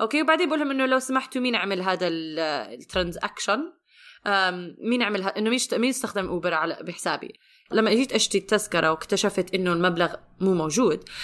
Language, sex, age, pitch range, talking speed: Arabic, female, 20-39, 205-305 Hz, 150 wpm